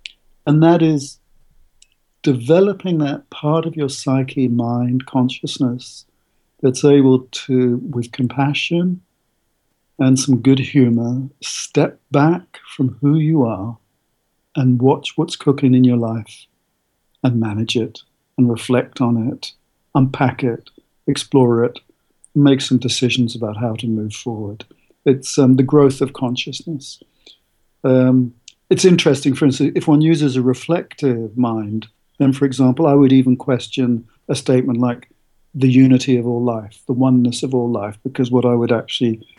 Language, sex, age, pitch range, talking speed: English, male, 50-69, 120-140 Hz, 145 wpm